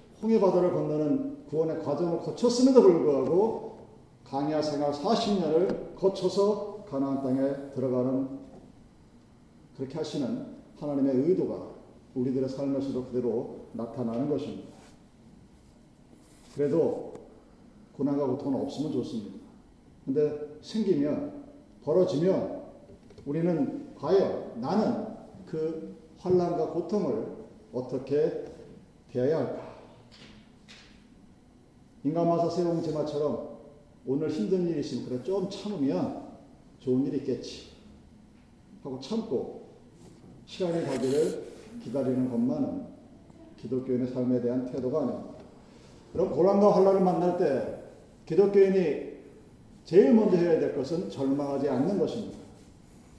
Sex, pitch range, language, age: male, 135-200 Hz, Korean, 40-59